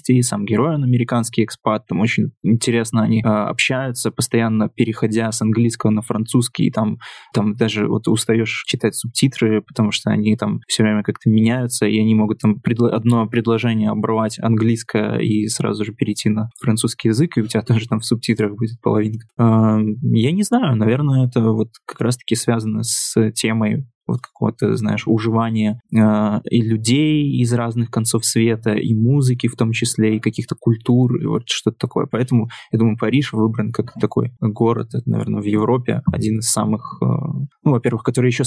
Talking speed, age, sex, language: 175 wpm, 20-39, male, Russian